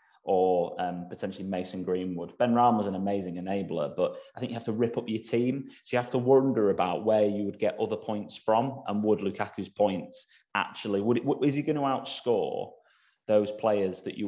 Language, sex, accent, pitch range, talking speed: English, male, British, 95-125 Hz, 215 wpm